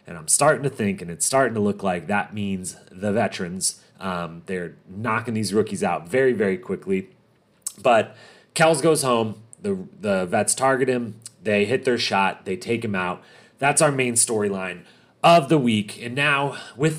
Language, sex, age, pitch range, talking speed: English, male, 30-49, 100-130 Hz, 180 wpm